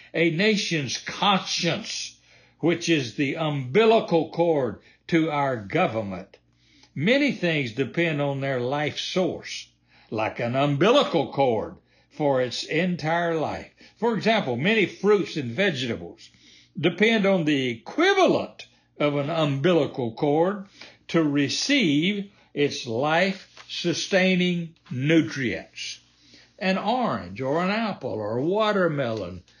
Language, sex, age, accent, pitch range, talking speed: English, male, 60-79, American, 120-180 Hz, 105 wpm